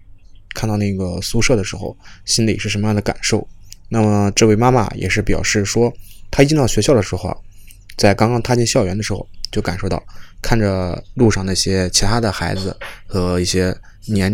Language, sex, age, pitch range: Chinese, male, 20-39, 95-115 Hz